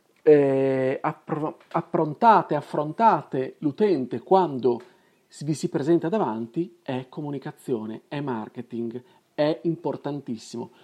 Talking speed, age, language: 85 wpm, 40-59, Italian